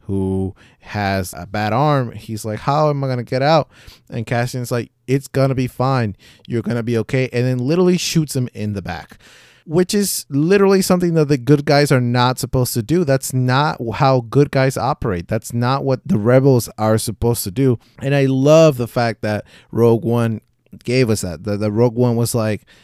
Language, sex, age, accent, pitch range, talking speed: English, male, 30-49, American, 105-125 Hz, 210 wpm